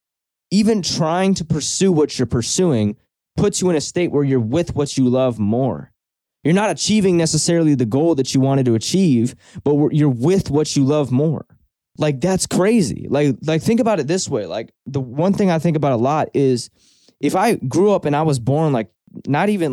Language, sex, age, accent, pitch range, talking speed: English, male, 20-39, American, 125-165 Hz, 205 wpm